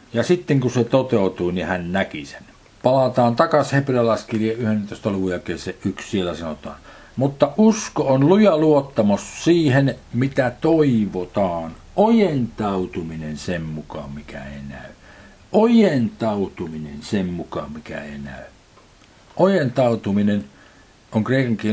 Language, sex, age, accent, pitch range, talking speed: Finnish, male, 60-79, native, 95-135 Hz, 115 wpm